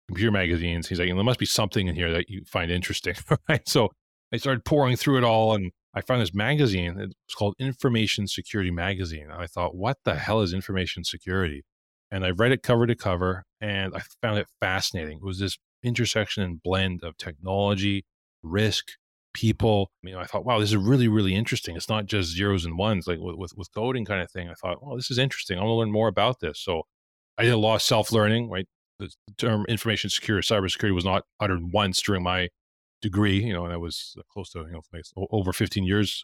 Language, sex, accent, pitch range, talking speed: English, male, American, 90-110 Hz, 215 wpm